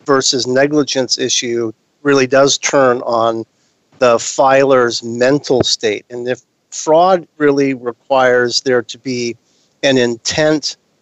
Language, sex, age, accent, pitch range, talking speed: English, male, 50-69, American, 120-140 Hz, 115 wpm